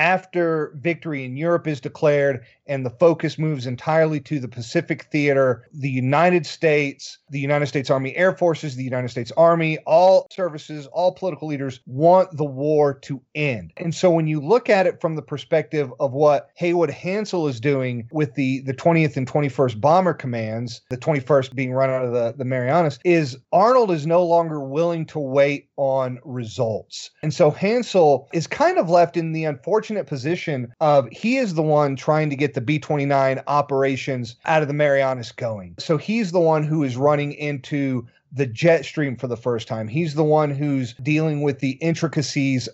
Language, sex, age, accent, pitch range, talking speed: English, male, 40-59, American, 130-160 Hz, 185 wpm